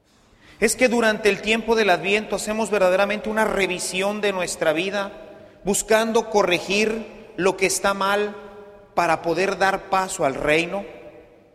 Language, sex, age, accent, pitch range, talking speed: English, male, 40-59, Mexican, 185-230 Hz, 135 wpm